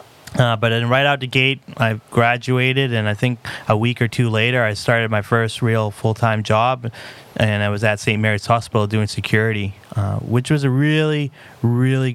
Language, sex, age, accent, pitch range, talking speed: English, male, 30-49, American, 110-130 Hz, 190 wpm